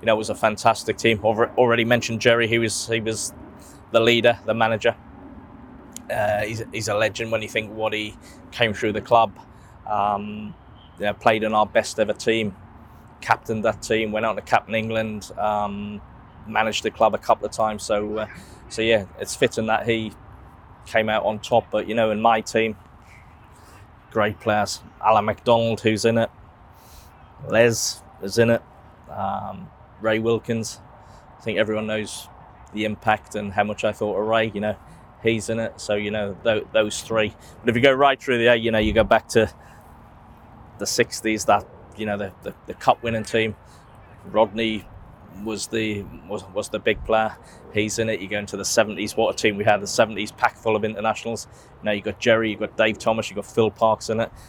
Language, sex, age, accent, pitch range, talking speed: English, male, 20-39, British, 105-115 Hz, 195 wpm